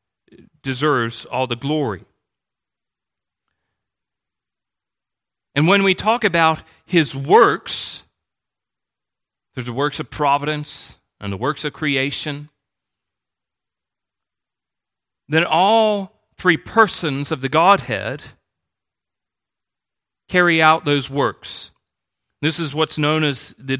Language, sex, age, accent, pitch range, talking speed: English, male, 40-59, American, 140-190 Hz, 95 wpm